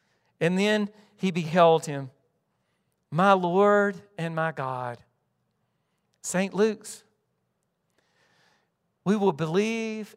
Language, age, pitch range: English, 50-69, 150-190 Hz